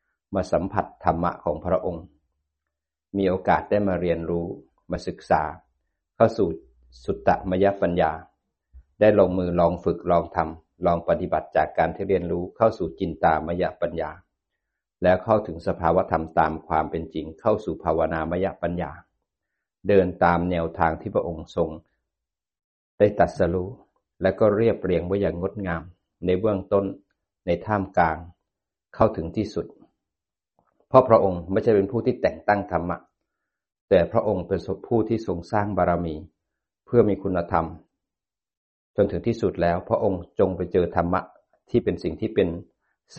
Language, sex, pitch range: Thai, male, 80-100 Hz